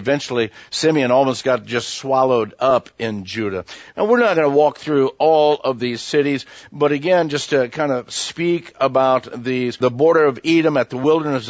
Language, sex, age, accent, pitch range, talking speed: English, male, 50-69, American, 130-160 Hz, 185 wpm